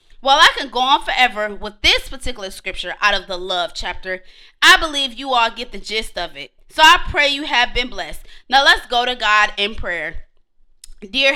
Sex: female